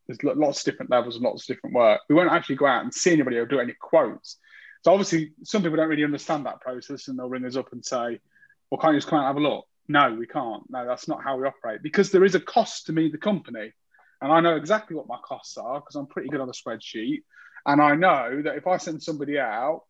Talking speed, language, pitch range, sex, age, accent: 270 wpm, English, 135-165 Hz, male, 30-49, British